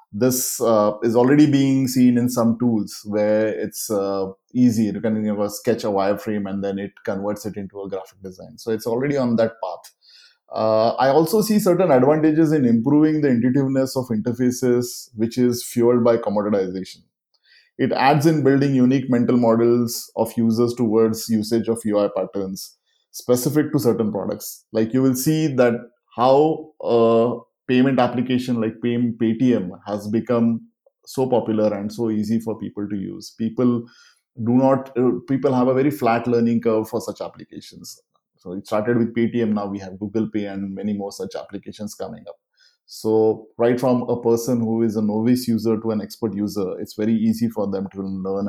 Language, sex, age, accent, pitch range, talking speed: English, male, 20-39, Indian, 105-125 Hz, 175 wpm